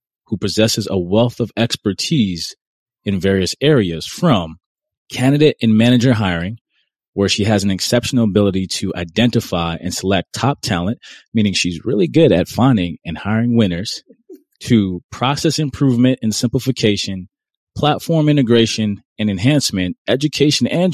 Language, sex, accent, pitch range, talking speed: English, male, American, 95-125 Hz, 130 wpm